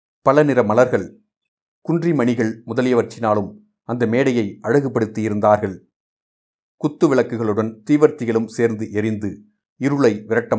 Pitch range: 110-135 Hz